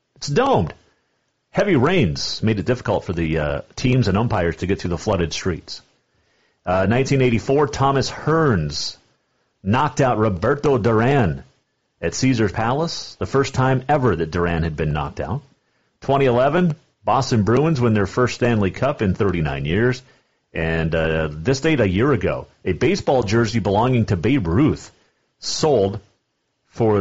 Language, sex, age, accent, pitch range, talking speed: English, male, 40-59, American, 85-130 Hz, 150 wpm